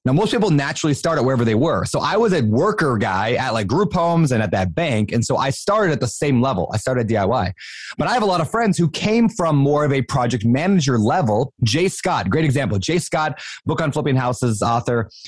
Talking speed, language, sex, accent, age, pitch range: 245 wpm, English, male, American, 30-49, 125-165 Hz